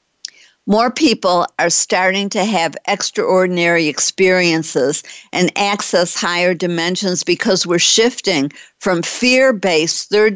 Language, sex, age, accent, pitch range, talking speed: English, female, 50-69, American, 170-220 Hz, 105 wpm